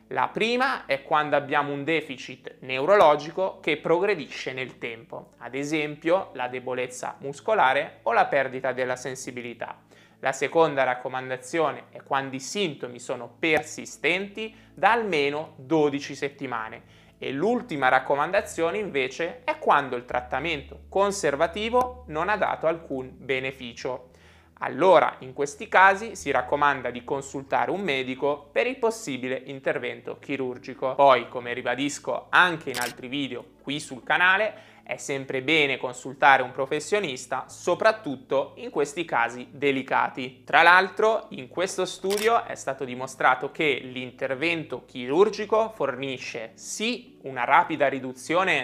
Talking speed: 125 wpm